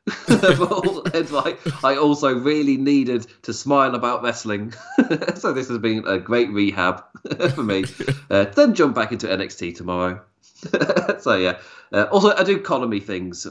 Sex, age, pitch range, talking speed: male, 20-39, 95-125 Hz, 150 wpm